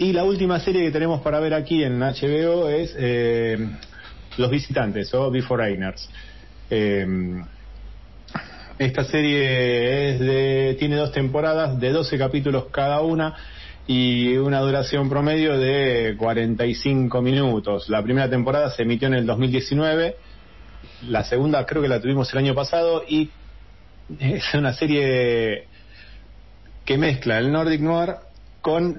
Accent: Argentinian